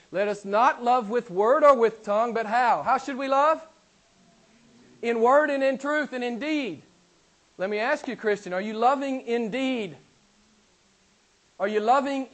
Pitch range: 175-245 Hz